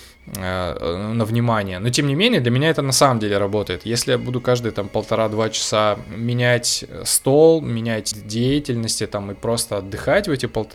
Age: 20-39